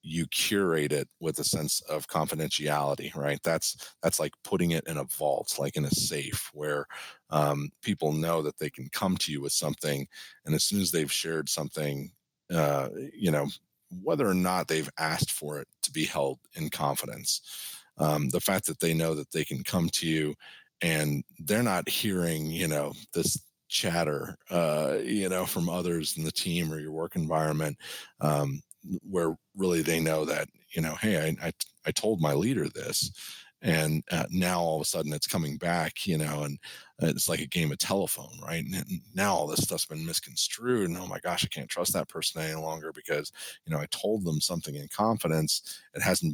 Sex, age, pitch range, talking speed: male, 40-59, 75-85 Hz, 195 wpm